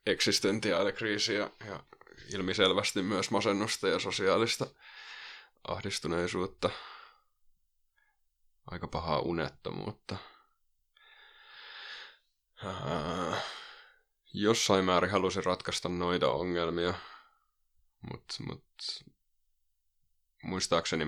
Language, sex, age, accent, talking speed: Finnish, male, 20-39, native, 60 wpm